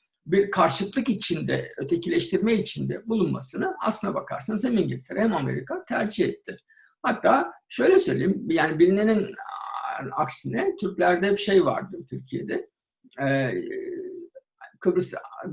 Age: 50-69